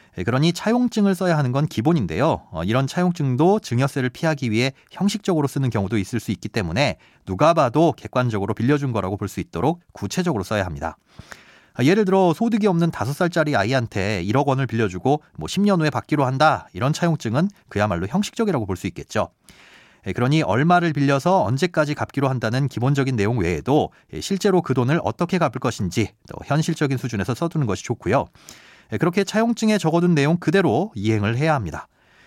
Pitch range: 115-170 Hz